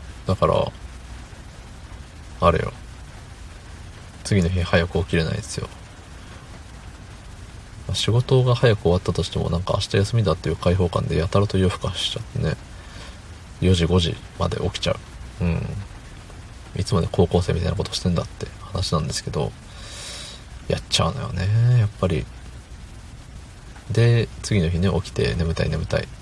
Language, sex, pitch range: Japanese, male, 85-105 Hz